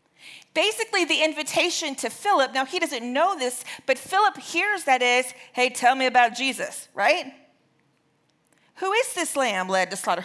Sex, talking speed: female, 165 wpm